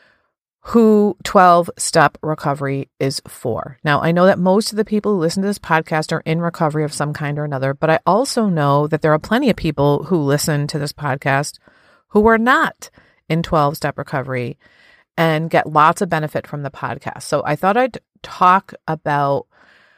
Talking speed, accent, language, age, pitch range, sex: 185 wpm, American, English, 30-49, 145-190 Hz, female